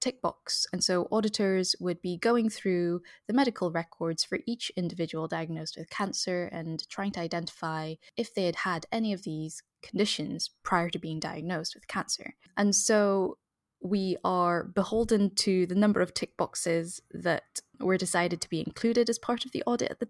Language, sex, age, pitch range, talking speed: English, female, 10-29, 165-205 Hz, 180 wpm